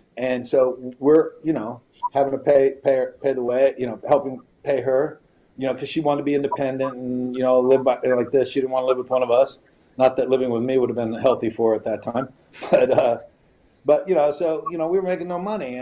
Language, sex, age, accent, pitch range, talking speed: English, male, 40-59, American, 130-160 Hz, 265 wpm